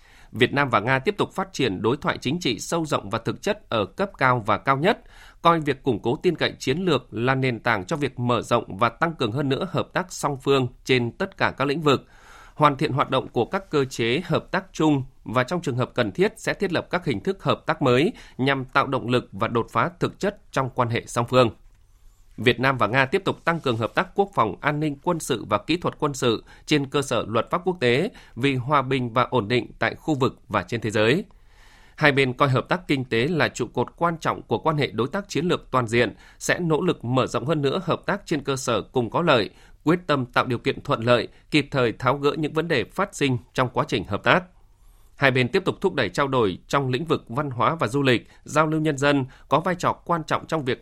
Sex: male